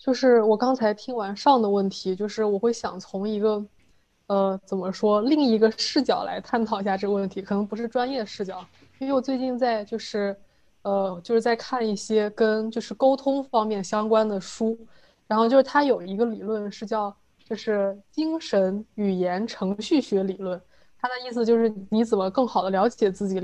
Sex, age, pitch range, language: female, 20-39, 195-230 Hz, Chinese